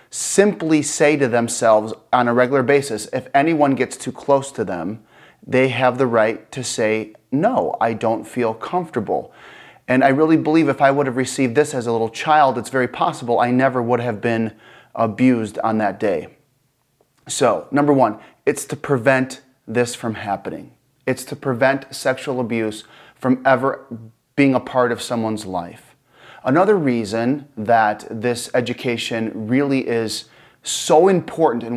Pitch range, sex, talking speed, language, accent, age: 115-135 Hz, male, 160 wpm, English, American, 30-49